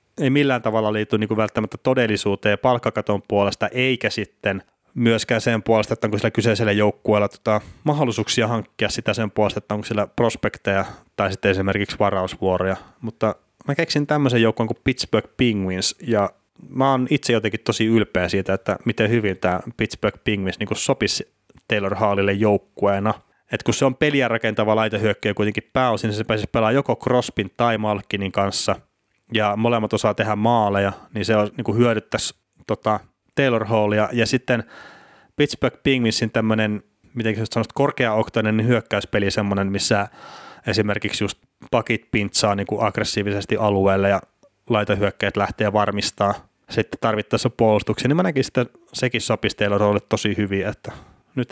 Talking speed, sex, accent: 145 wpm, male, native